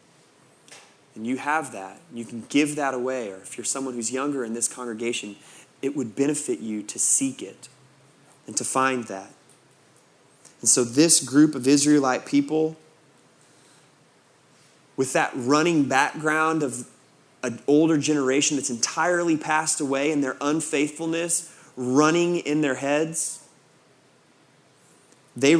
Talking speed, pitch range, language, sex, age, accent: 130 wpm, 125-160 Hz, English, male, 20-39, American